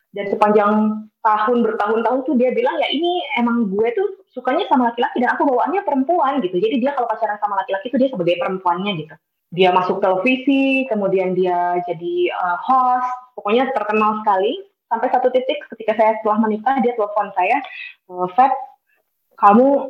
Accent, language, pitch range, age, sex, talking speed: native, Indonesian, 205-265 Hz, 20-39, female, 165 wpm